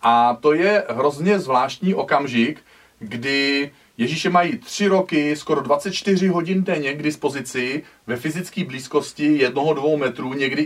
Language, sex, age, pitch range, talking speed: Czech, male, 40-59, 130-165 Hz, 140 wpm